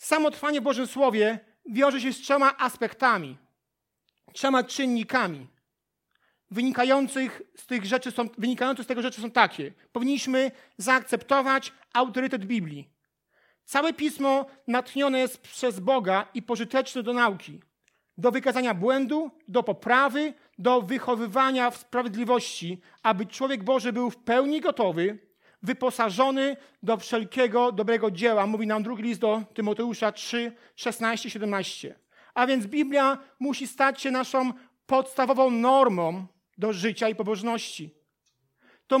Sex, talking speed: male, 120 wpm